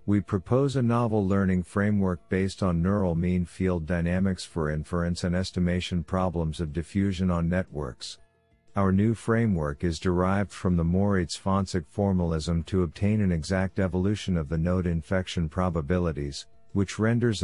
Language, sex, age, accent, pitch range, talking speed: English, male, 50-69, American, 85-105 Hz, 150 wpm